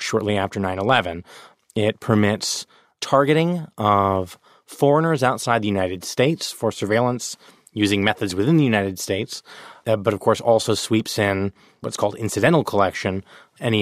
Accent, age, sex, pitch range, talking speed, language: American, 30-49, male, 100-120 Hz, 145 wpm, English